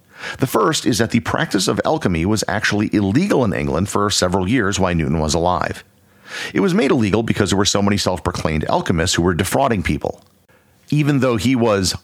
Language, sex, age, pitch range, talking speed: English, male, 50-69, 85-105 Hz, 195 wpm